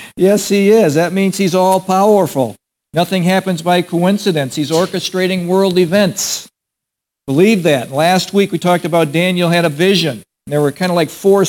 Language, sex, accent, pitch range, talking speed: English, male, American, 165-195 Hz, 165 wpm